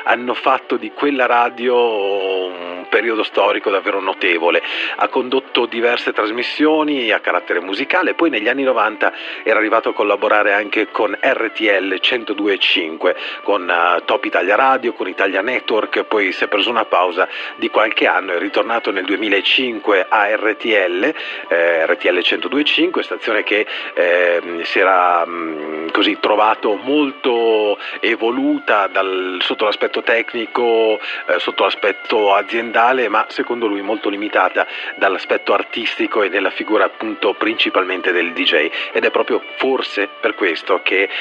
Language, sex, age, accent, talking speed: Italian, male, 40-59, native, 140 wpm